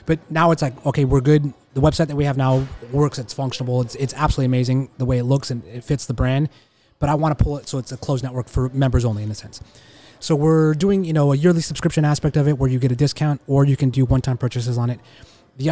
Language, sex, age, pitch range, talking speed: English, male, 20-39, 125-150 Hz, 270 wpm